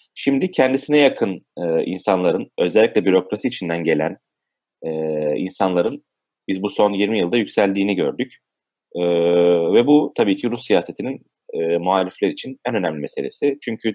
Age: 30-49